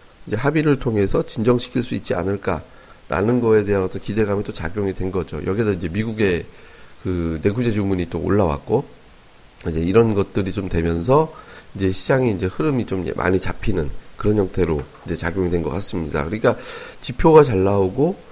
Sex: male